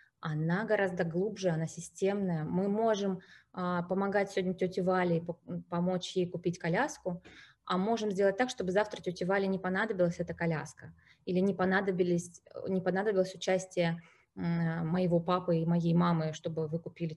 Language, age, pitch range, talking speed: Russian, 20-39, 170-195 Hz, 150 wpm